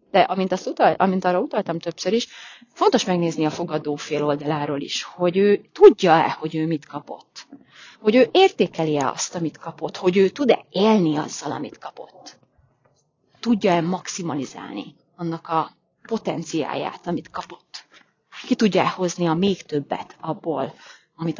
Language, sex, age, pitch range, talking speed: Hungarian, female, 30-49, 160-195 Hz, 135 wpm